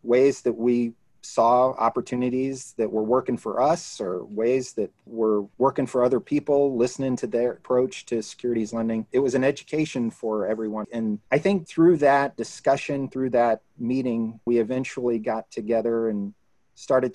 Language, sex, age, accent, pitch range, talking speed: English, male, 30-49, American, 115-130 Hz, 160 wpm